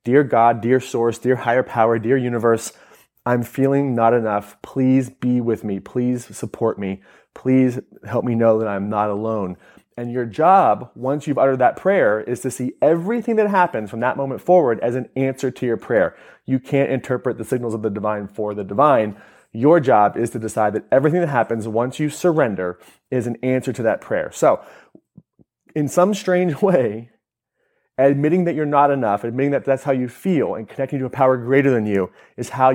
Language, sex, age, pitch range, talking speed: English, male, 30-49, 115-140 Hz, 195 wpm